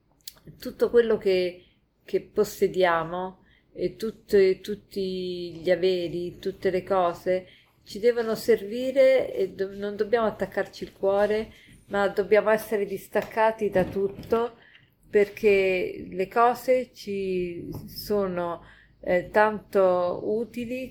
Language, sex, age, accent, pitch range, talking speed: Italian, female, 40-59, native, 185-215 Hz, 110 wpm